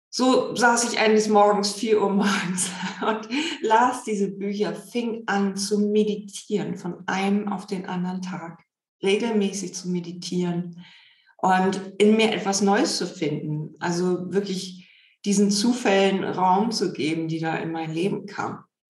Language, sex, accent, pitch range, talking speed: German, female, German, 170-210 Hz, 145 wpm